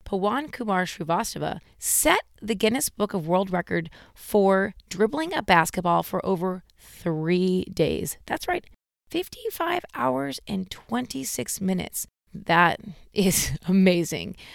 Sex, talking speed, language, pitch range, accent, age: female, 115 wpm, English, 165-220 Hz, American, 30-49